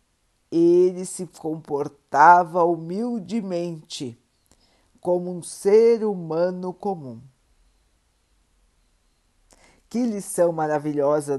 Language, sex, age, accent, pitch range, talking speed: Portuguese, female, 50-69, Brazilian, 150-205 Hz, 65 wpm